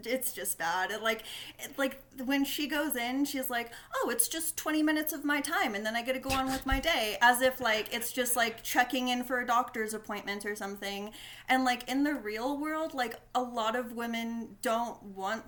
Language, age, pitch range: English, 20-39, 225-285 Hz